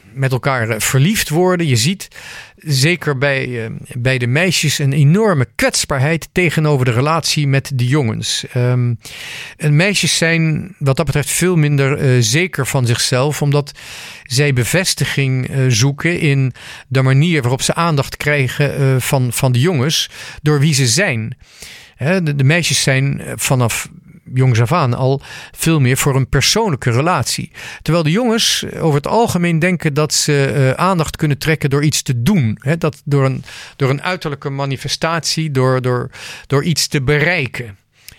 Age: 50-69